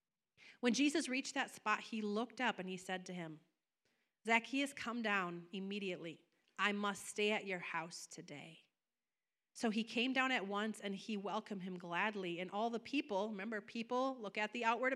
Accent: American